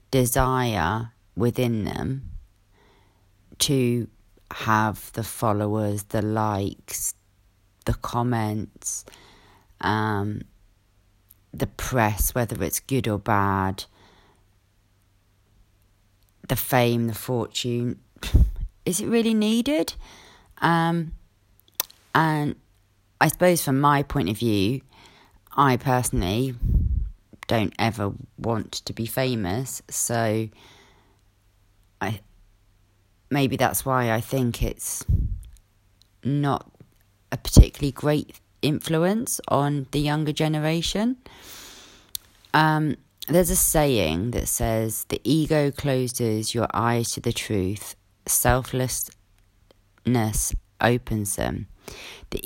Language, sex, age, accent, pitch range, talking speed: English, female, 30-49, British, 100-130 Hz, 90 wpm